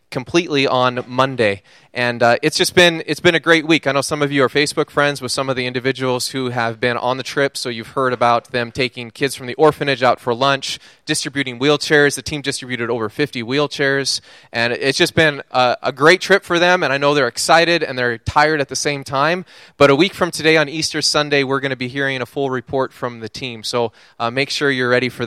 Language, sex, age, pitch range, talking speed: English, male, 20-39, 125-155 Hz, 240 wpm